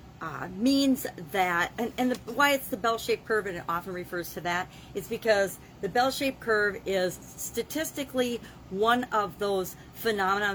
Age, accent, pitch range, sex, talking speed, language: 50-69, American, 175-225 Hz, female, 160 wpm, English